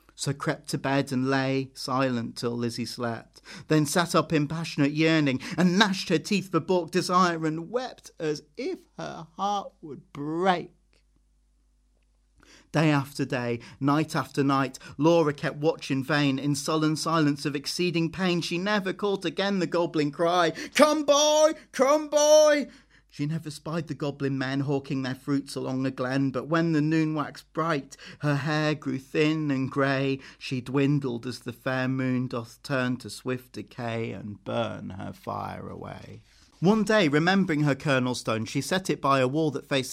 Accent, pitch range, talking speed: British, 135-170 Hz, 170 wpm